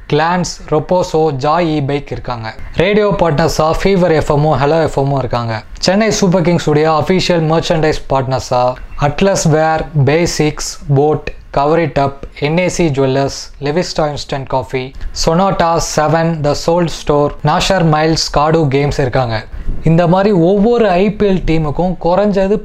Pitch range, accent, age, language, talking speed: 135-175 Hz, native, 20-39, Tamil, 120 wpm